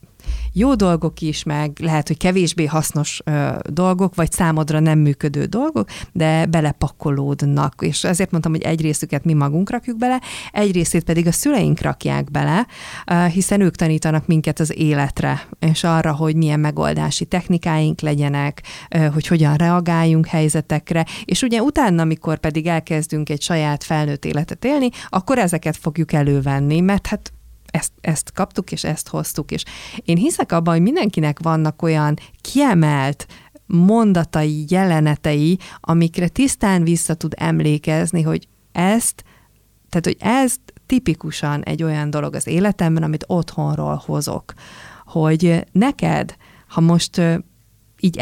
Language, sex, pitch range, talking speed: Hungarian, female, 150-175 Hz, 140 wpm